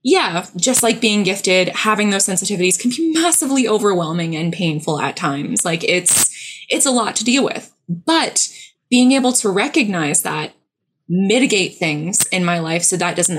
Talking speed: 170 wpm